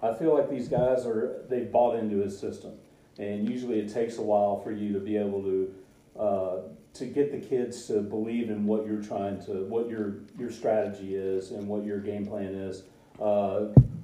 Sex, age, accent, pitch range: male, 40-59, American, 100-115 Hz